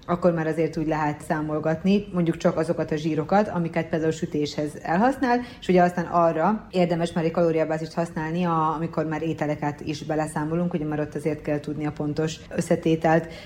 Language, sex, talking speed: Hungarian, female, 175 wpm